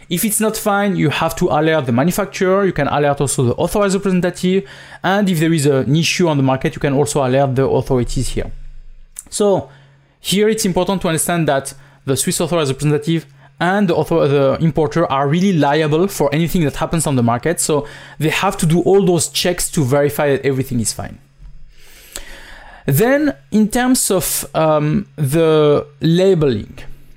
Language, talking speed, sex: English, 175 wpm, male